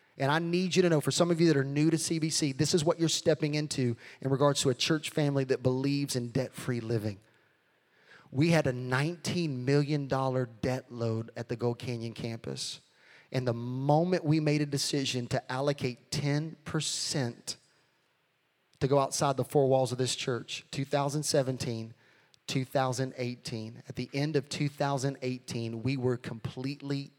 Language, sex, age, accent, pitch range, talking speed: English, male, 30-49, American, 125-160 Hz, 160 wpm